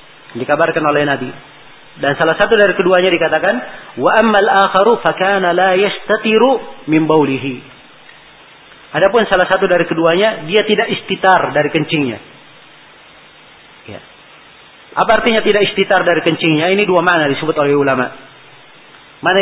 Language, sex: Indonesian, male